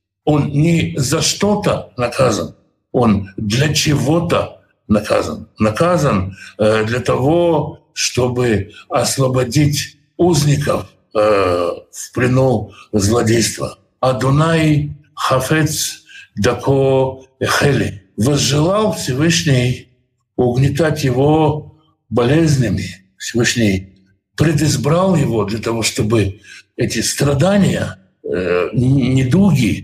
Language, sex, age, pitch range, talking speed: Russian, male, 60-79, 110-155 Hz, 70 wpm